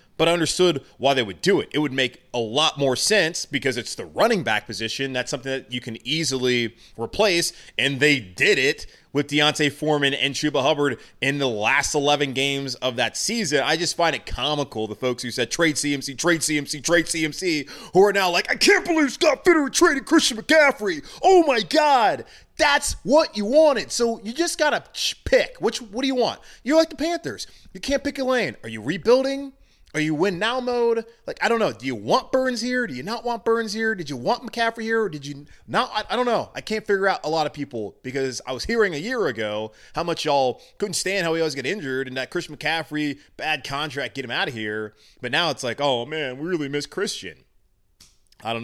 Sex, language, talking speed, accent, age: male, English, 225 wpm, American, 30-49